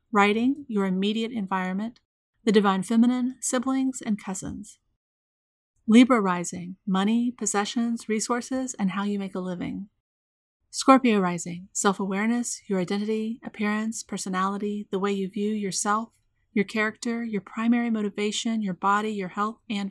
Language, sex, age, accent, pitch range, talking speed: English, female, 30-49, American, 195-225 Hz, 130 wpm